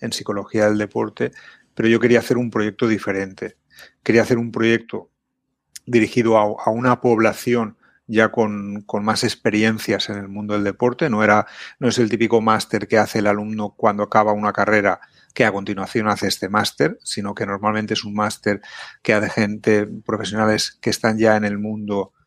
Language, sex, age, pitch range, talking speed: Spanish, male, 30-49, 105-120 Hz, 180 wpm